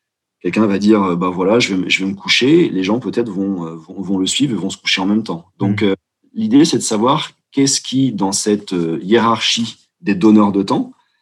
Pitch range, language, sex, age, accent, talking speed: 95-125 Hz, French, male, 40-59, French, 225 wpm